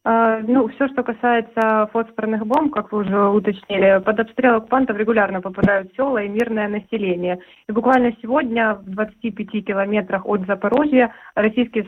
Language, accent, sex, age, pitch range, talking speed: Russian, native, female, 20-39, 205-230 Hz, 140 wpm